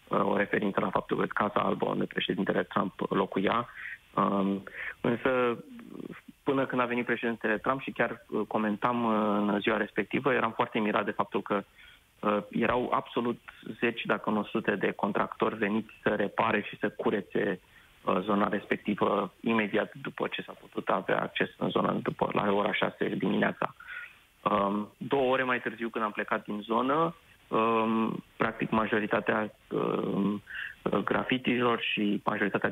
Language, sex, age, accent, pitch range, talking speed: Romanian, male, 30-49, native, 105-130 Hz, 140 wpm